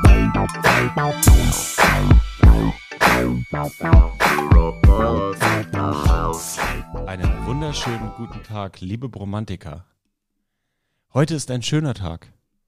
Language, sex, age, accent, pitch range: German, male, 30-49, German, 95-120 Hz